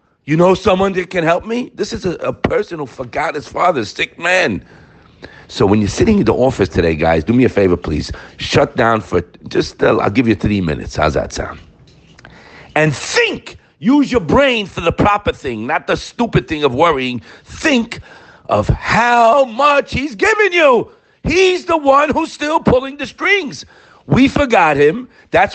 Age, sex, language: 50-69, male, English